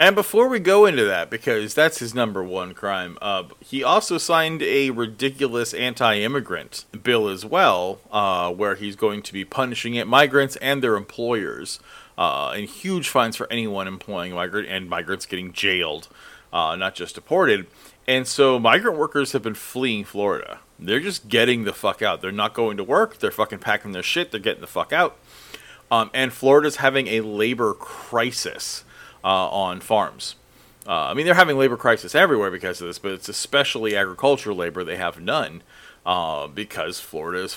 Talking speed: 180 wpm